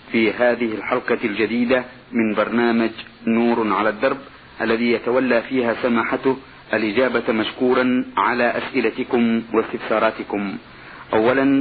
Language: Arabic